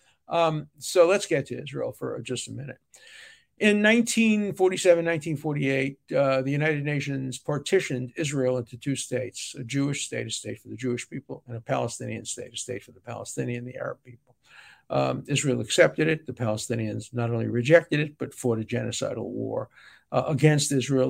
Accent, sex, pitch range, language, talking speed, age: American, male, 125-165 Hz, English, 175 wpm, 60-79